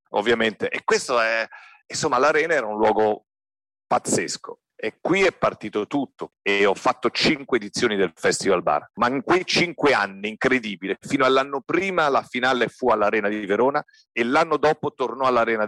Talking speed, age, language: 165 wpm, 40-59, Italian